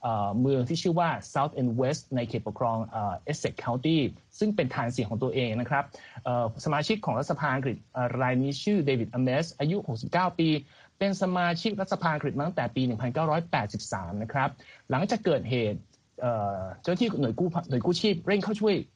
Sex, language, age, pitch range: male, Thai, 30-49, 120-165 Hz